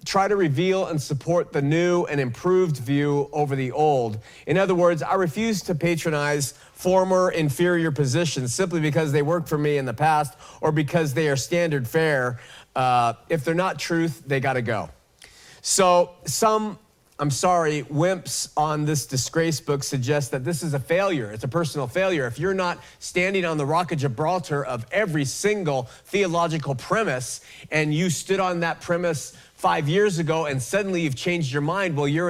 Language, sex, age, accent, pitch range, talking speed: English, male, 40-59, American, 145-180 Hz, 180 wpm